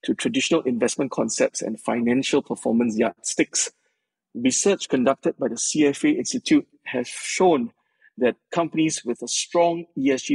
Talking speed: 130 wpm